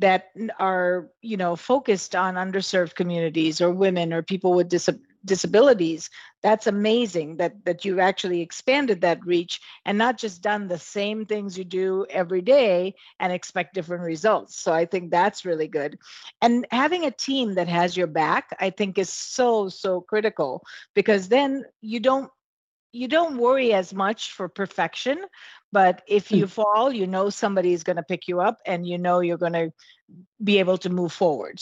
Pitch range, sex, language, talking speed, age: 175-220 Hz, female, English, 175 wpm, 50-69